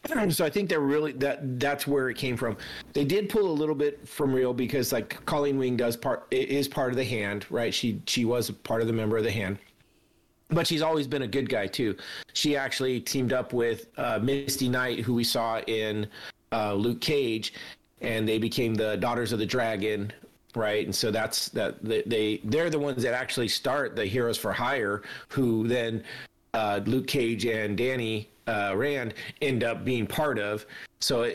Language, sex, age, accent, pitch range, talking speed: English, male, 40-59, American, 110-140 Hz, 195 wpm